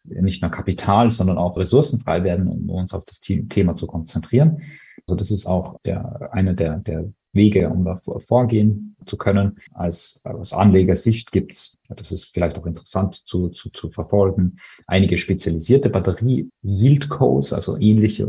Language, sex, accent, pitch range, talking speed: German, male, German, 90-105 Hz, 160 wpm